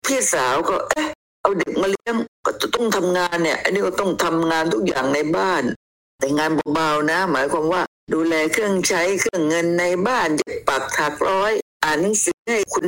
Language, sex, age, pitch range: Thai, female, 60-79, 155-205 Hz